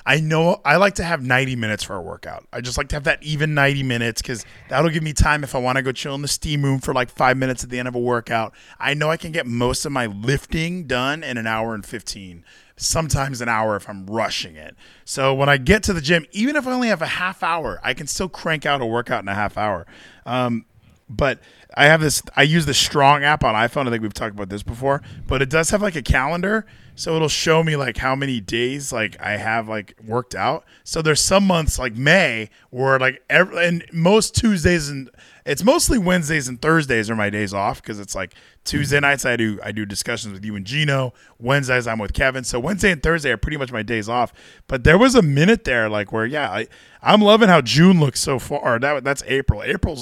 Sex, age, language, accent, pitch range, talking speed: male, 20-39, English, American, 115-160 Hz, 250 wpm